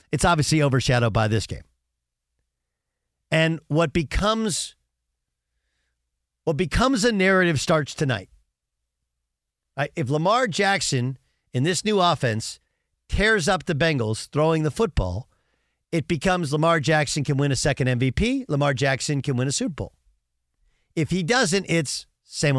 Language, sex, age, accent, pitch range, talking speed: English, male, 50-69, American, 105-175 Hz, 135 wpm